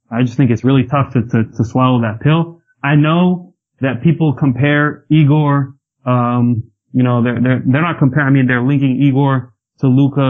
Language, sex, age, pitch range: English, male, 20-39, 120-145 Hz